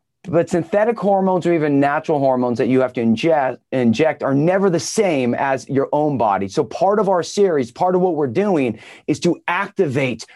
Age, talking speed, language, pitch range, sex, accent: 30-49, 195 wpm, English, 145-195 Hz, male, American